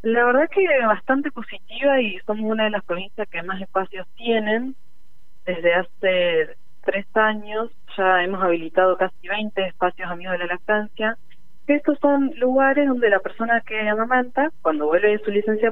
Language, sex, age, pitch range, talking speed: Spanish, female, 30-49, 165-220 Hz, 155 wpm